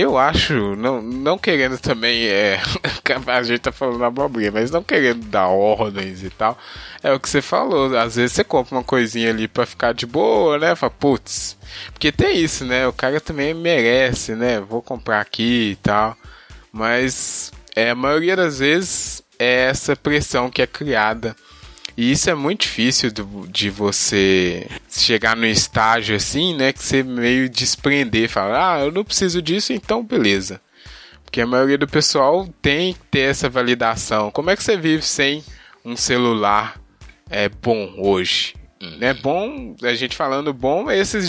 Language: Portuguese